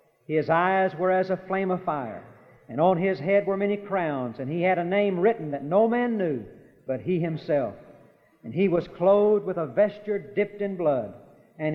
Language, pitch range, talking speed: English, 155-200 Hz, 200 wpm